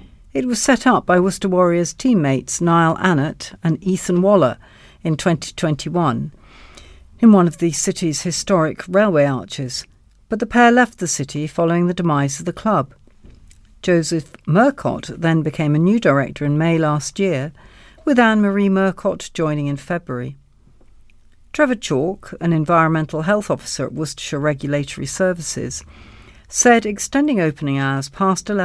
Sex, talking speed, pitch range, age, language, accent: female, 140 wpm, 135-190 Hz, 60-79, English, British